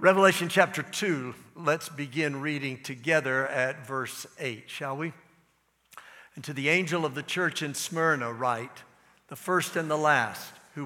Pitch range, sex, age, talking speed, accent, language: 140-185 Hz, male, 60-79, 155 wpm, American, English